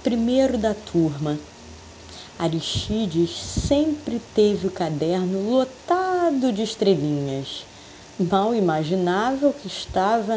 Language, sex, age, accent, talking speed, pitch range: Portuguese, female, 20-39, Brazilian, 95 wpm, 170-230 Hz